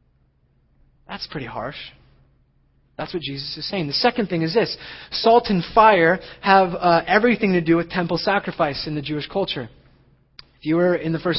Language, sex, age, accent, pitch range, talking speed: English, male, 30-49, American, 145-190 Hz, 180 wpm